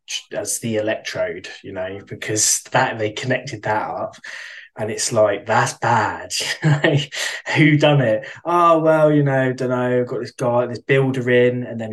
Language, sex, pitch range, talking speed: English, male, 110-135 Hz, 175 wpm